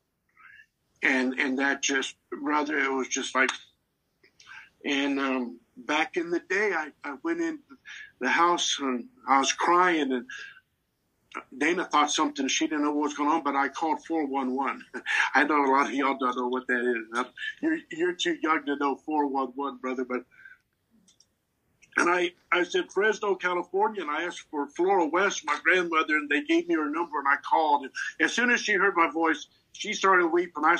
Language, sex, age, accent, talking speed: English, male, 60-79, American, 185 wpm